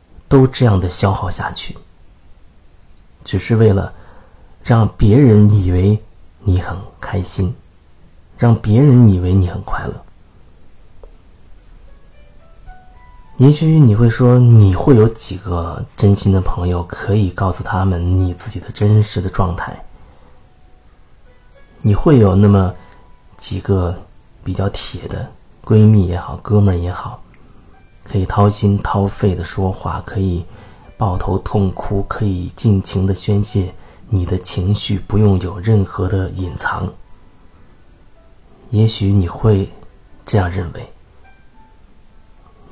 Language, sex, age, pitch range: Chinese, male, 30-49, 90-110 Hz